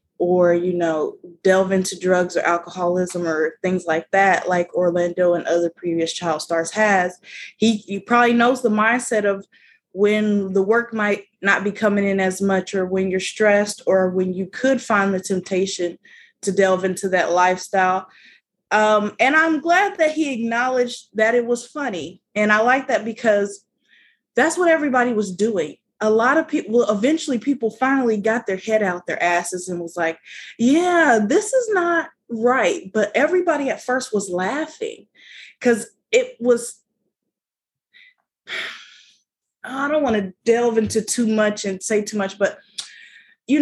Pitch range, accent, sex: 190-255 Hz, American, female